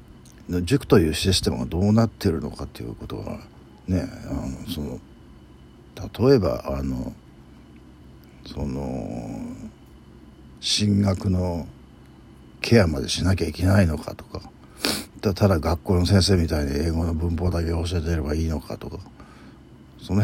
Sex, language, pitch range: male, Japanese, 70-95 Hz